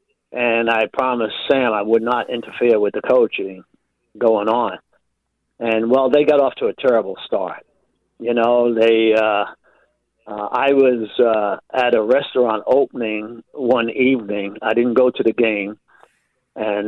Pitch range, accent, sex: 110-125 Hz, American, male